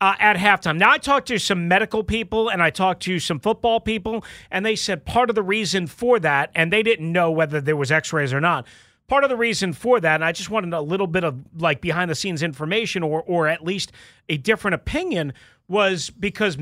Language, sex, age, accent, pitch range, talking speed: English, male, 30-49, American, 165-220 Hz, 230 wpm